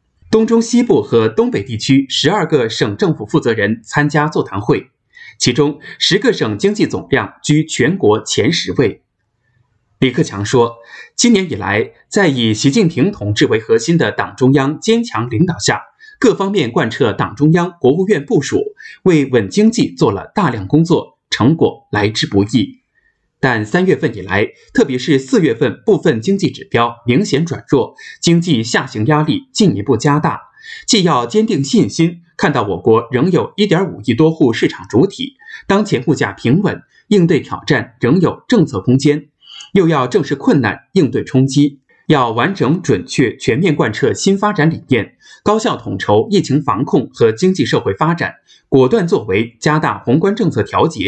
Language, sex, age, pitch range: Chinese, male, 20-39, 125-210 Hz